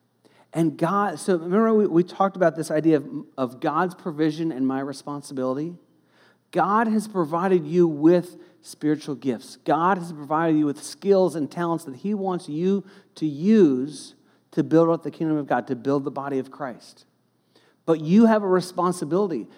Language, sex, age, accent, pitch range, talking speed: English, male, 40-59, American, 150-185 Hz, 170 wpm